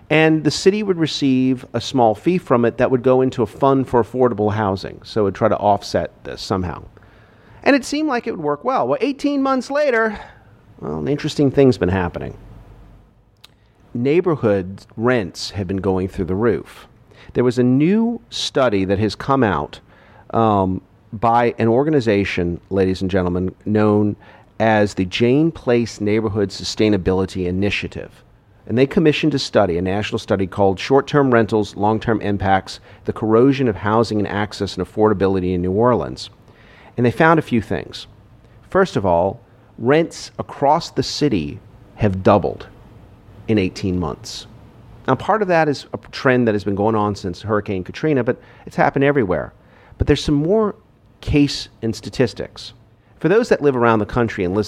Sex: male